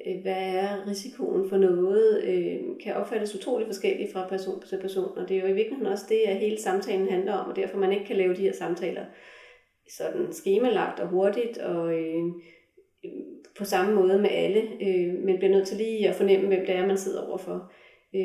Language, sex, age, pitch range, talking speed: Danish, female, 30-49, 185-230 Hz, 185 wpm